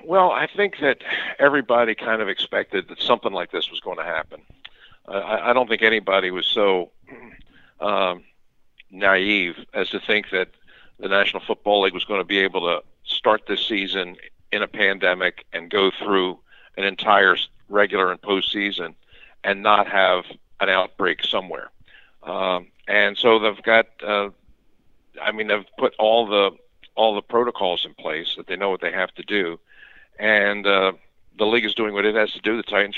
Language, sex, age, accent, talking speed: English, male, 50-69, American, 175 wpm